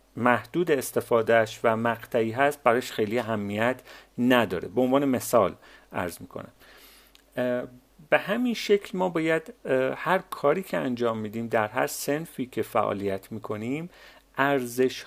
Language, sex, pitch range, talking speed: Persian, male, 115-160 Hz, 125 wpm